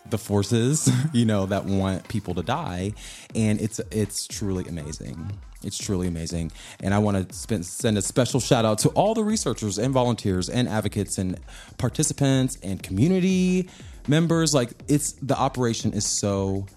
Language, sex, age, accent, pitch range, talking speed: English, male, 20-39, American, 95-130 Hz, 160 wpm